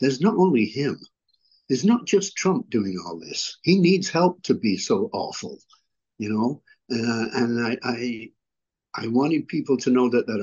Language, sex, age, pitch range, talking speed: English, male, 60-79, 115-165 Hz, 180 wpm